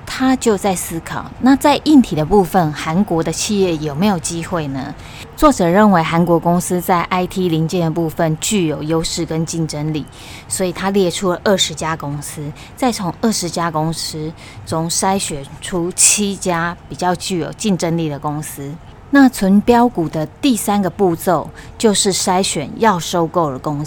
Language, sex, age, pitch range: Chinese, female, 20-39, 155-195 Hz